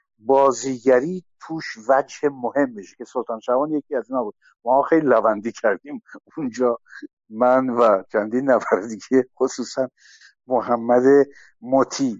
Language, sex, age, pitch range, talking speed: Persian, male, 60-79, 120-165 Hz, 120 wpm